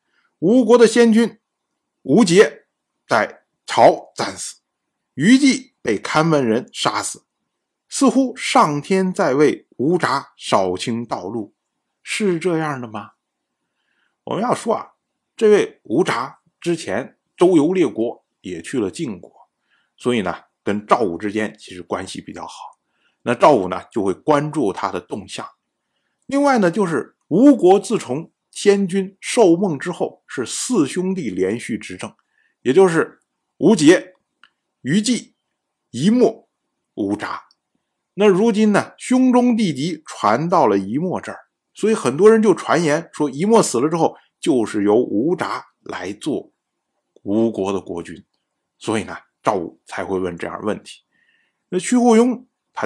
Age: 50-69